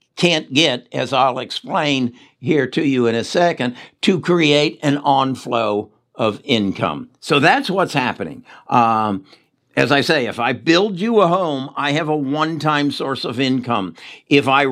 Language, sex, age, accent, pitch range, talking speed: English, male, 60-79, American, 115-150 Hz, 165 wpm